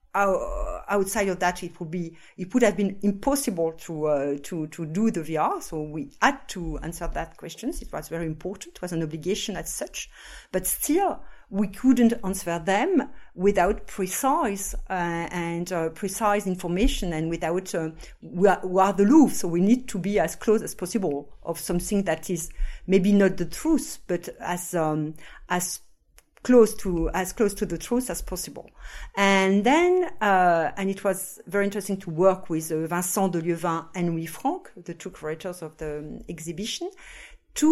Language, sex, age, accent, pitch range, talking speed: English, female, 50-69, French, 170-210 Hz, 180 wpm